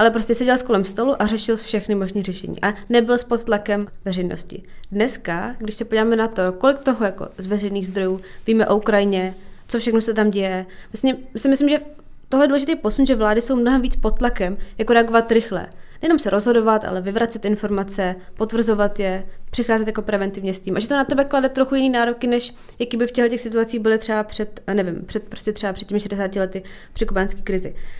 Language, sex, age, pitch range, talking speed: Czech, female, 20-39, 195-245 Hz, 205 wpm